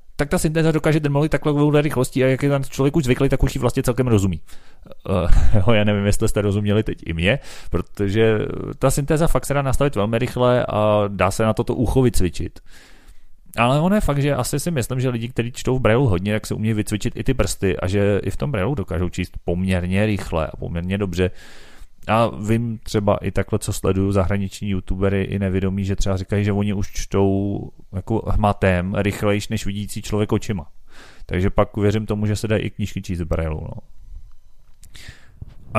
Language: Czech